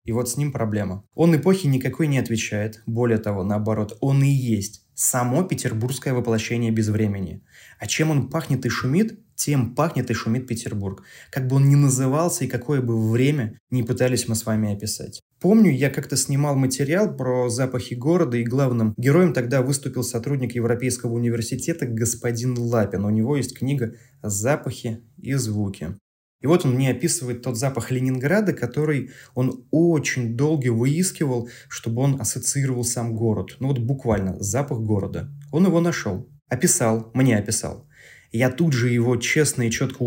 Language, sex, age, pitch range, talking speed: Russian, male, 20-39, 115-140 Hz, 160 wpm